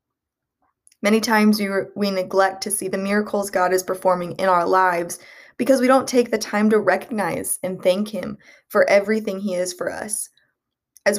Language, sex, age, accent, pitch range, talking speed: English, female, 20-39, American, 180-215 Hz, 180 wpm